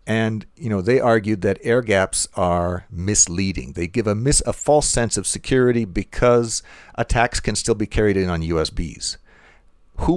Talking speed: 170 wpm